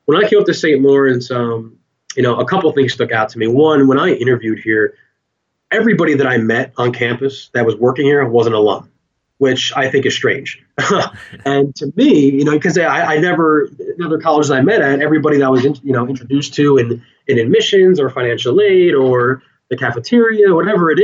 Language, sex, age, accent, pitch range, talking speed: English, male, 20-39, American, 125-155 Hz, 215 wpm